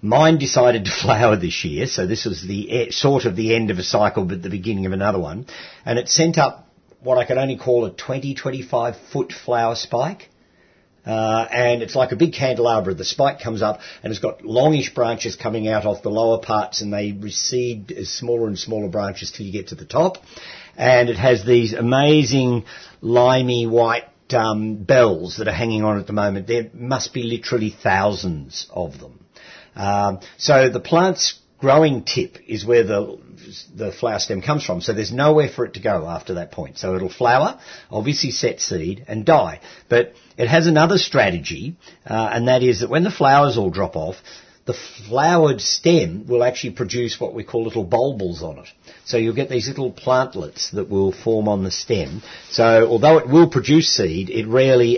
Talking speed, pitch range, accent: 195 wpm, 105-130 Hz, Australian